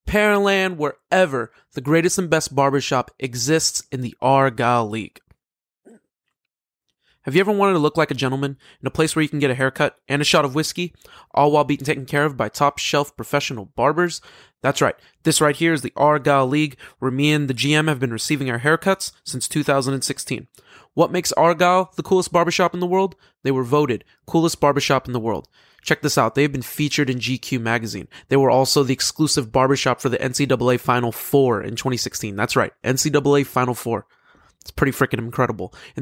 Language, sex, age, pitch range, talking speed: English, male, 20-39, 125-150 Hz, 195 wpm